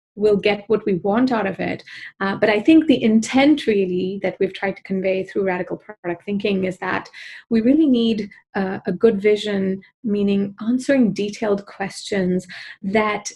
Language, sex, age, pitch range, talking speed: English, female, 30-49, 190-230 Hz, 170 wpm